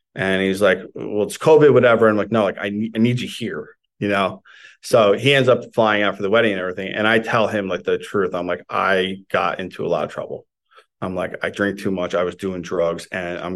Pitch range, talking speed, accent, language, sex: 95-120 Hz, 260 wpm, American, English, male